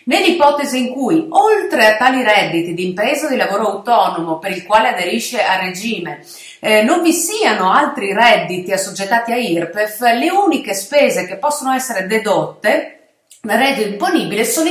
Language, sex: Italian, female